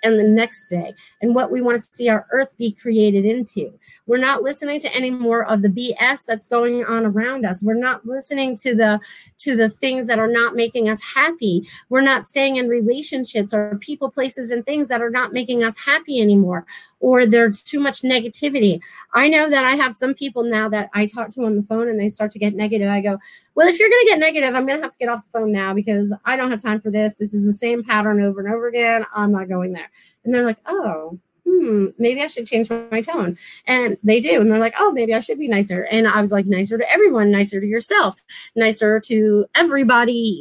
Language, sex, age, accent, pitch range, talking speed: English, female, 30-49, American, 215-270 Hz, 240 wpm